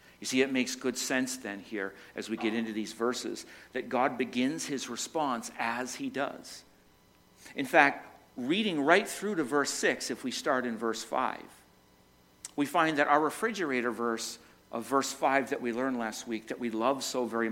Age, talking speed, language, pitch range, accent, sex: 50-69, 190 wpm, English, 110-155 Hz, American, male